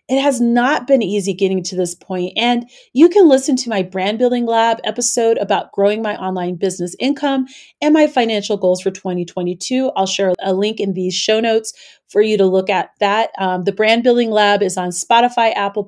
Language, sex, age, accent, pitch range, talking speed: English, female, 30-49, American, 200-255 Hz, 205 wpm